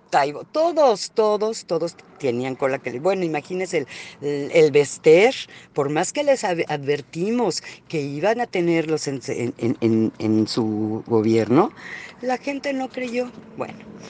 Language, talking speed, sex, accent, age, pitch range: Spanish, 130 wpm, female, Mexican, 40-59, 155-245 Hz